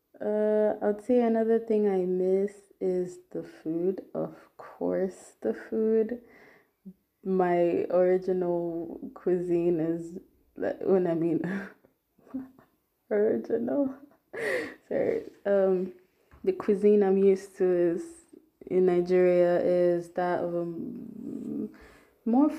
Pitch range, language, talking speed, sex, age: 170-200 Hz, English, 100 wpm, female, 20-39